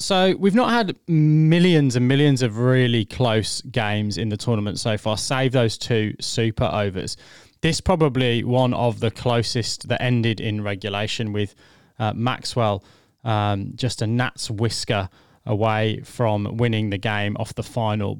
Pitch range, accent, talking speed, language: 110-130 Hz, British, 155 wpm, English